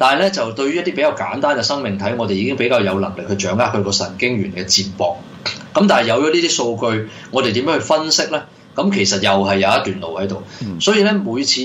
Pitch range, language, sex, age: 100-120 Hz, Chinese, male, 20-39